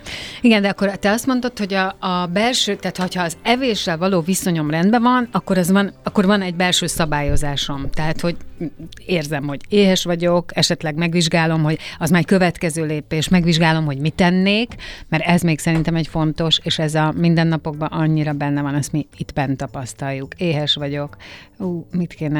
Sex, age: female, 30-49